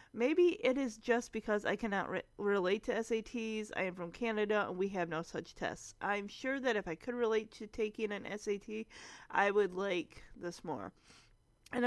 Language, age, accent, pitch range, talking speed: English, 30-49, American, 200-260 Hz, 185 wpm